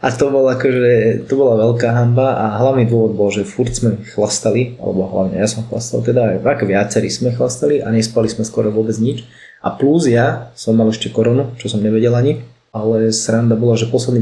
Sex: male